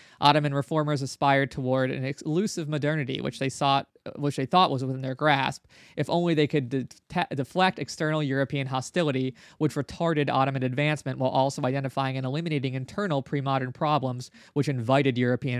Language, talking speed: English, 160 wpm